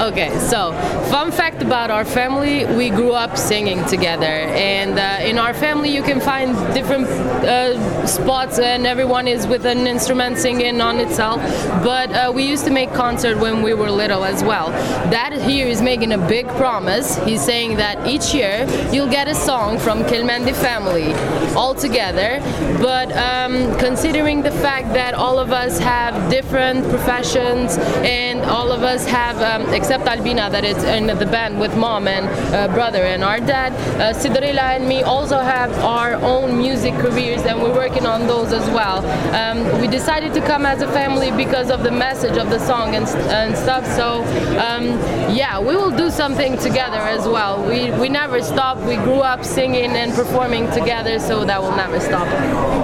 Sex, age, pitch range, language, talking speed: female, 20-39, 230-260 Hz, English, 180 wpm